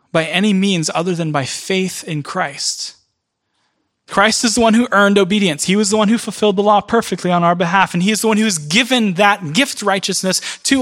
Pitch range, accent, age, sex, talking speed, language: 150-210 Hz, American, 20-39, male, 220 wpm, English